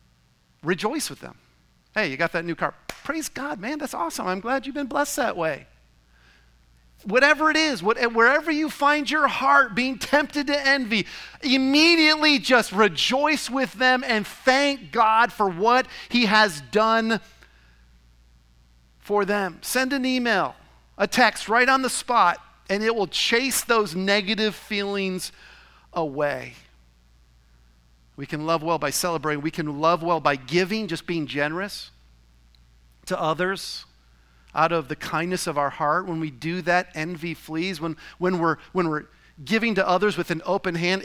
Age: 40-59